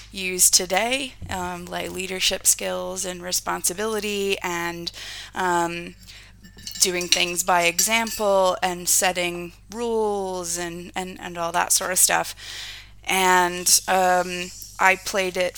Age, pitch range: 20-39, 170-190 Hz